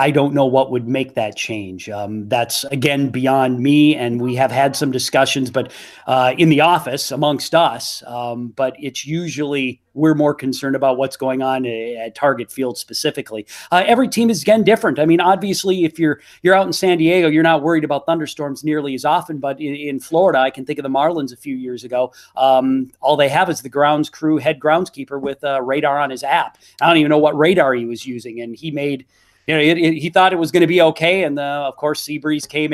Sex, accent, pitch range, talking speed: male, American, 130-155 Hz, 235 wpm